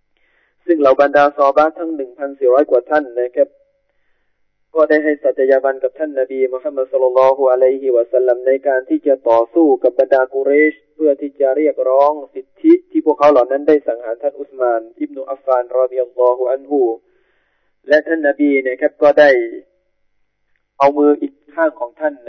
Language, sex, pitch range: Thai, male, 130-155 Hz